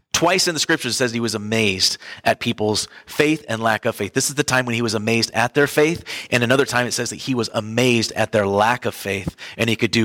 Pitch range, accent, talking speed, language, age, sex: 115-160 Hz, American, 270 wpm, English, 30-49, male